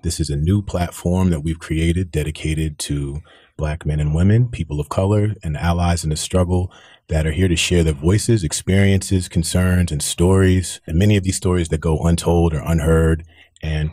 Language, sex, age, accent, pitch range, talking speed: English, male, 30-49, American, 80-90 Hz, 190 wpm